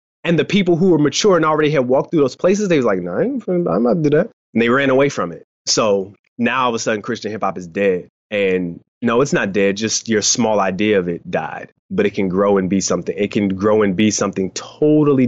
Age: 20-39